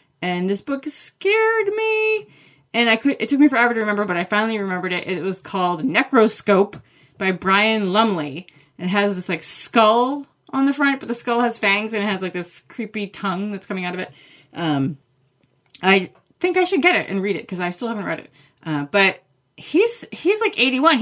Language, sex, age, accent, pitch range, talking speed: English, female, 20-39, American, 175-235 Hz, 210 wpm